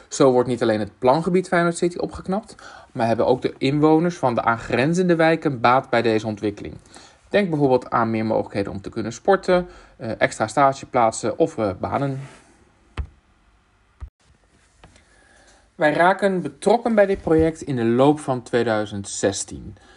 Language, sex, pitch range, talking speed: Dutch, male, 105-150 Hz, 140 wpm